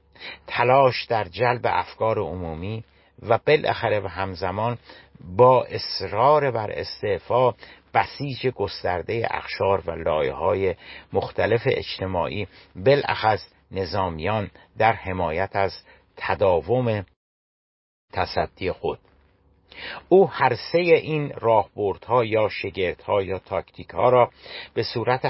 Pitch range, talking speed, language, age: 95-125 Hz, 95 wpm, Persian, 50-69